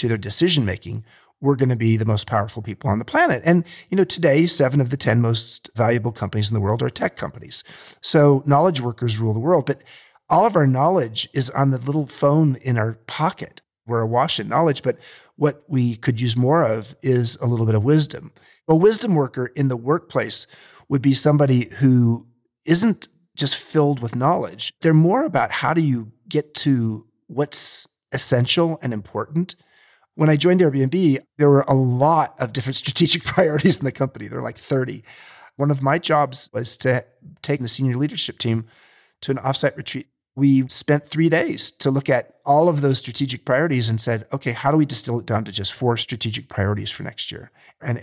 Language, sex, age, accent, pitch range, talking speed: English, male, 40-59, American, 120-150 Hz, 195 wpm